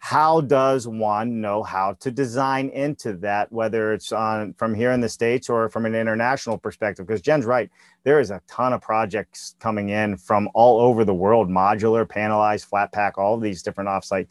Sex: male